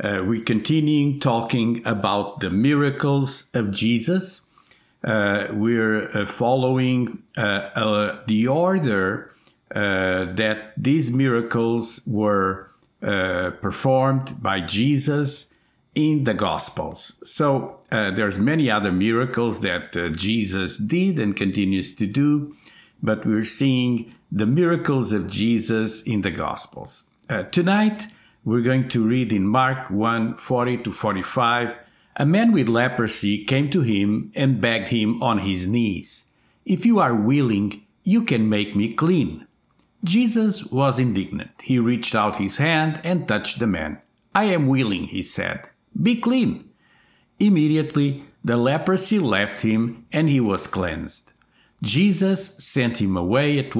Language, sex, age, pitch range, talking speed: English, male, 50-69, 105-145 Hz, 135 wpm